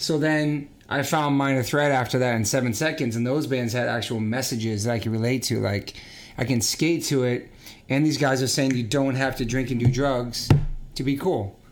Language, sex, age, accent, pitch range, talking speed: English, male, 30-49, American, 120-140 Hz, 225 wpm